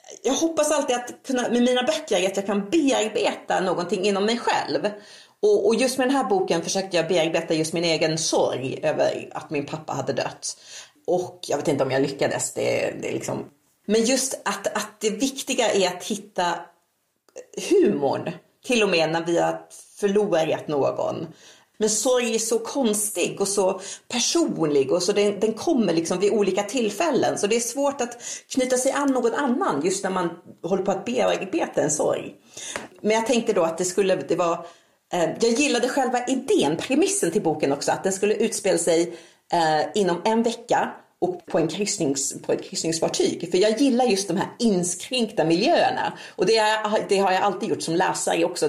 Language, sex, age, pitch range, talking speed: Swedish, female, 40-59, 175-250 Hz, 185 wpm